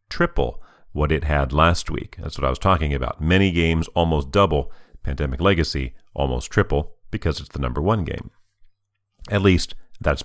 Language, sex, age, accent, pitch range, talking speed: English, male, 40-59, American, 75-105 Hz, 170 wpm